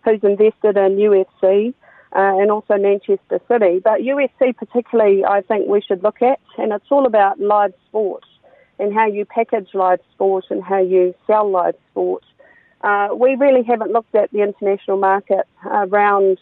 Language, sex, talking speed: English, female, 170 wpm